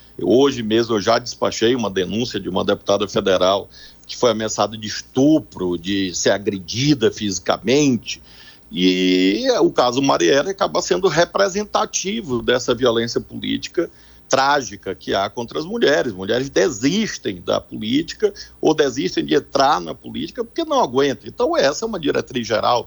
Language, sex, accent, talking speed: Portuguese, male, Brazilian, 145 wpm